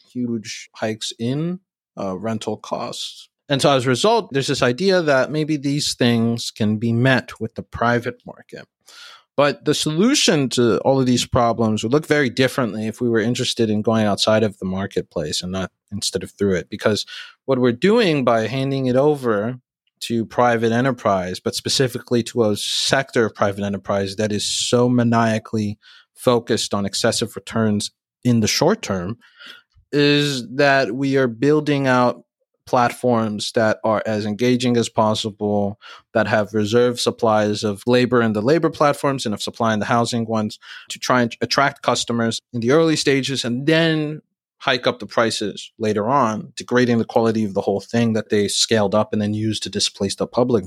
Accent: American